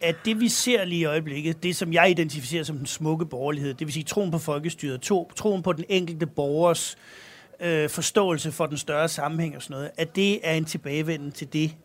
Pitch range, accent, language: 155-195 Hz, native, Danish